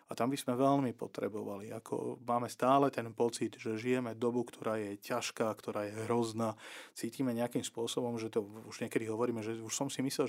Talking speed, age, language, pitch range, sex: 195 wpm, 40-59, Slovak, 115-130 Hz, male